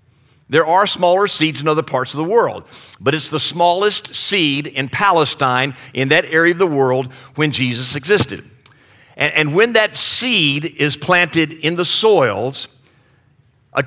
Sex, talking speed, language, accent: male, 160 wpm, English, American